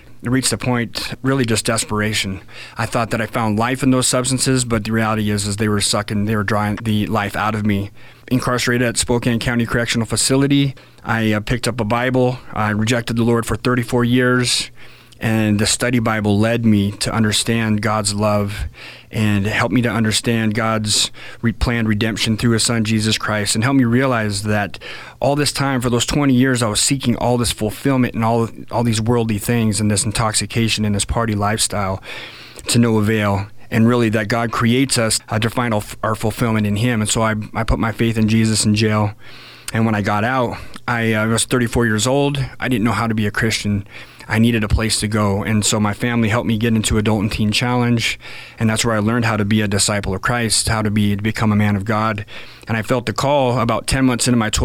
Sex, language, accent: male, English, American